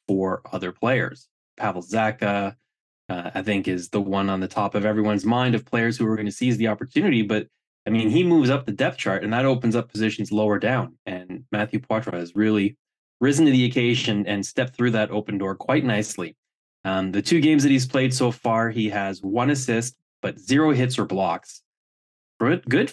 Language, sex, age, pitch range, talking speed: English, male, 20-39, 100-125 Hz, 205 wpm